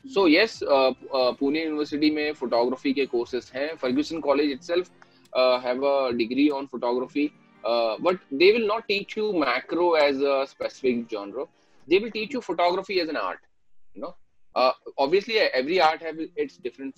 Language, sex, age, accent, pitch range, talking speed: Marathi, male, 20-39, native, 120-165 Hz, 165 wpm